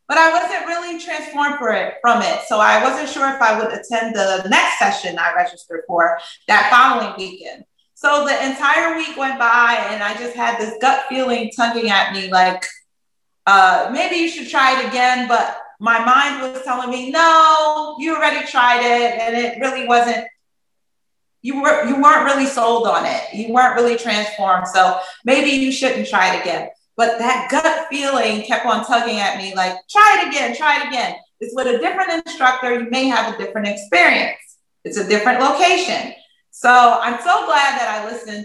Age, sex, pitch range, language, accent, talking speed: 30-49, female, 210-280 Hz, English, American, 185 wpm